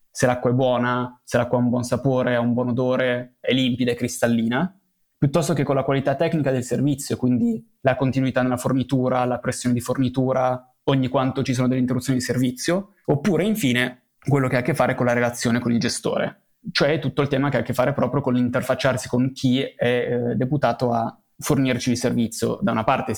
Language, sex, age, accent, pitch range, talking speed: Italian, male, 20-39, native, 120-135 Hz, 210 wpm